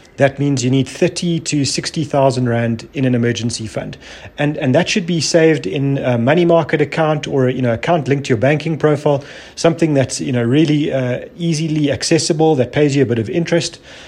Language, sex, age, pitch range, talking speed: English, male, 30-49, 125-155 Hz, 200 wpm